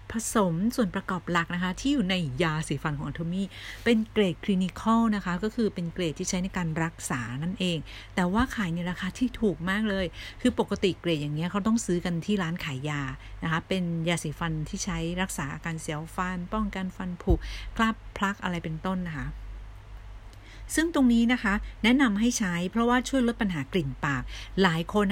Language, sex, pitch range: Thai, female, 155-205 Hz